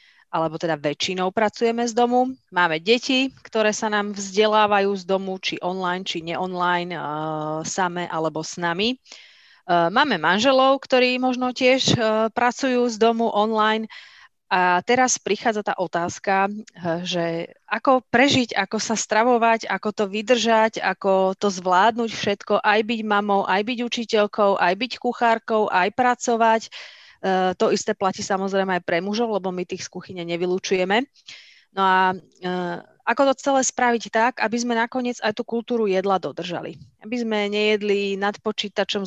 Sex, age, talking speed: female, 30-49, 150 wpm